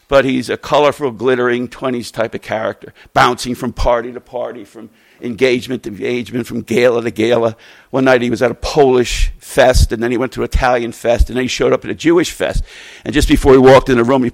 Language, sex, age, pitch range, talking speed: English, male, 60-79, 115-135 Hz, 235 wpm